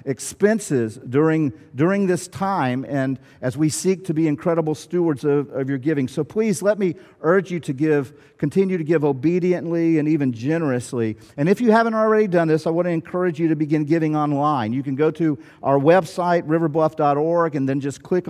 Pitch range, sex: 140-170 Hz, male